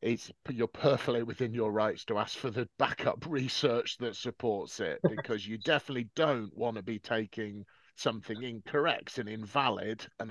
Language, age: English, 40-59